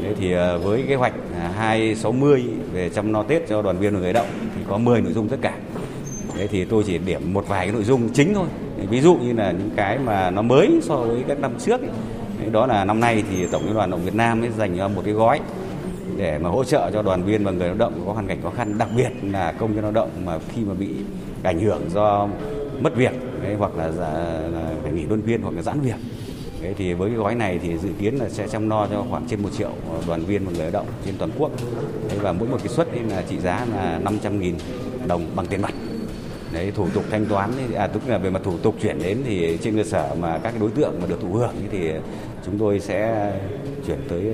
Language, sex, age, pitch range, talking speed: Vietnamese, male, 20-39, 95-115 Hz, 255 wpm